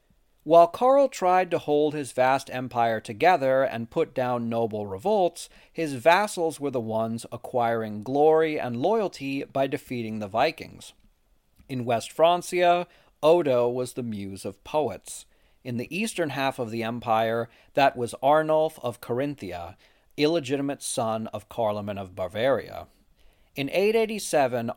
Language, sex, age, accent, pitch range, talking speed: English, male, 40-59, American, 115-150 Hz, 135 wpm